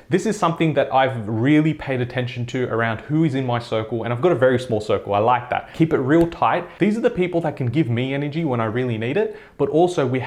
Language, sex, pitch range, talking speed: English, male, 120-145 Hz, 270 wpm